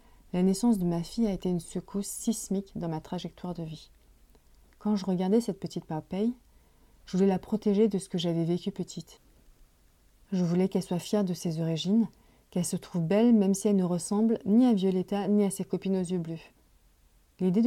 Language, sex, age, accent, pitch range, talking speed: French, female, 30-49, French, 170-210 Hz, 200 wpm